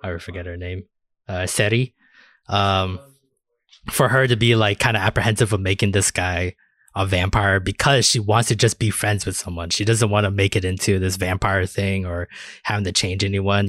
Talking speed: 195 wpm